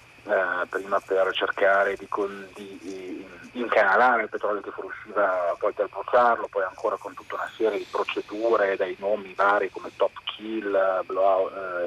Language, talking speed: Italian, 160 wpm